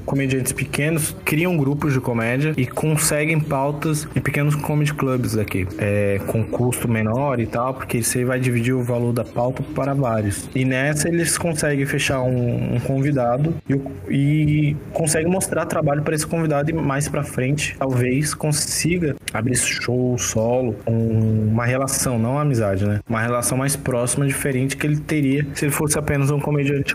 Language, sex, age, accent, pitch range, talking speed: Portuguese, male, 20-39, Brazilian, 125-155 Hz, 165 wpm